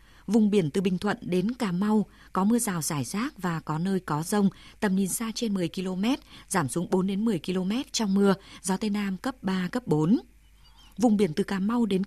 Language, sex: Vietnamese, female